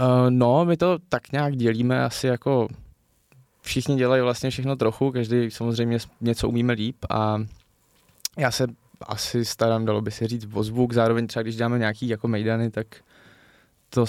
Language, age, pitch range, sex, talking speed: Czech, 20-39, 110-120 Hz, male, 160 wpm